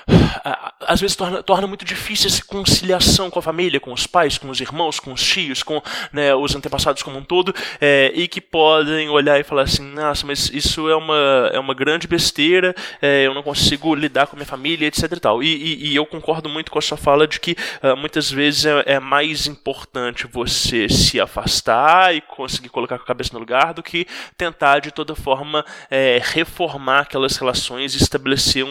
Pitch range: 140-170 Hz